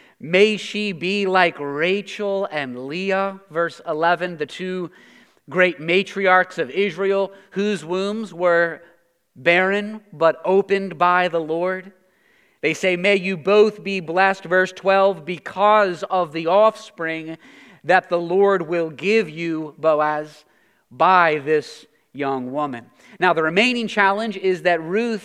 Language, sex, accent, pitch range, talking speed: English, male, American, 160-195 Hz, 130 wpm